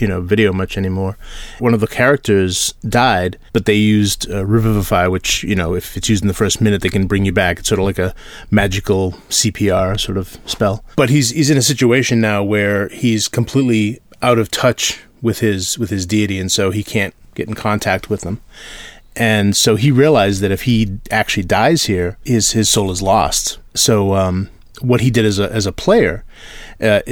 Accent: American